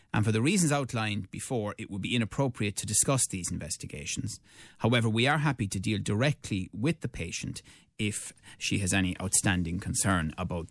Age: 30-49